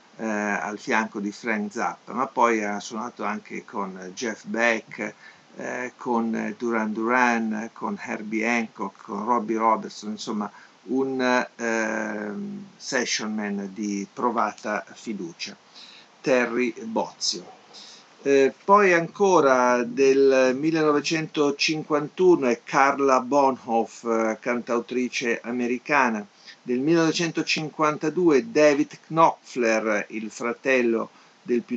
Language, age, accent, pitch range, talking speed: Italian, 50-69, native, 110-145 Hz, 100 wpm